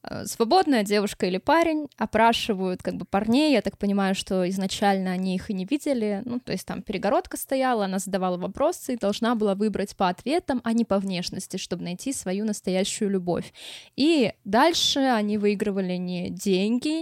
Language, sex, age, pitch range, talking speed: Russian, female, 20-39, 200-255 Hz, 170 wpm